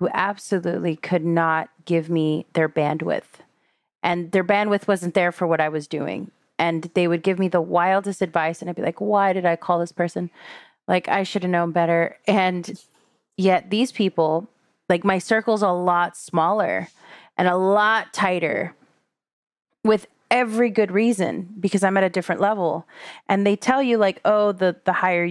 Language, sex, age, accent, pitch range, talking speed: English, female, 30-49, American, 175-210 Hz, 180 wpm